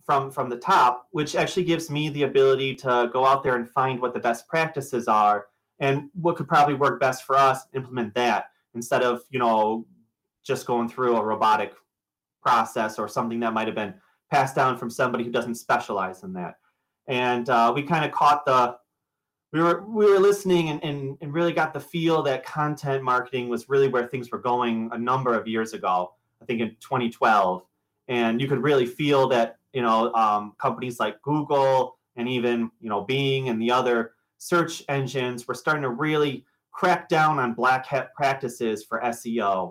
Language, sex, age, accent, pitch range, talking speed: English, male, 30-49, American, 120-150 Hz, 195 wpm